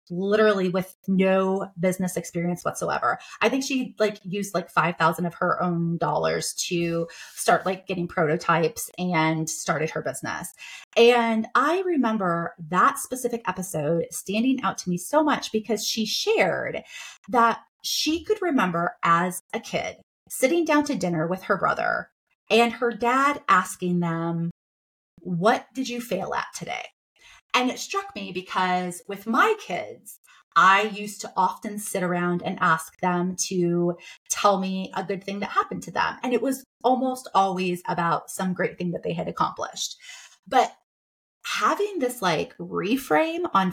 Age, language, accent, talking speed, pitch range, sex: 30-49, English, American, 155 wpm, 175-240 Hz, female